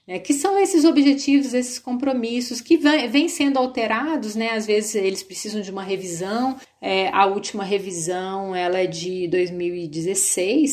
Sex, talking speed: female, 150 wpm